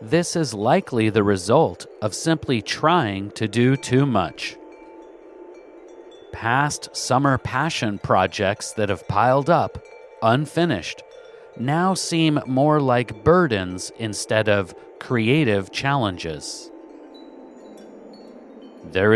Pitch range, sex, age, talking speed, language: 105-160 Hz, male, 40-59, 95 wpm, English